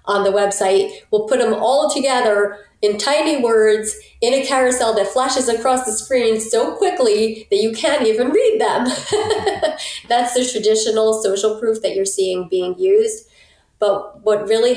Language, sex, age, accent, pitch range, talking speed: English, female, 30-49, American, 185-255 Hz, 165 wpm